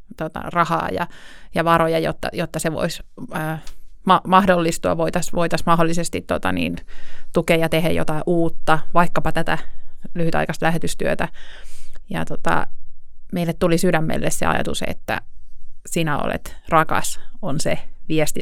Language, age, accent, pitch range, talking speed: Finnish, 30-49, native, 160-175 Hz, 125 wpm